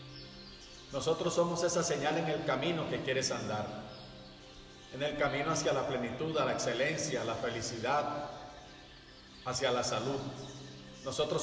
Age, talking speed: 50-69, 135 wpm